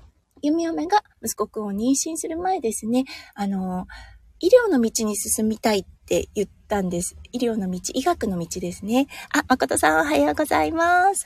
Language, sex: Japanese, female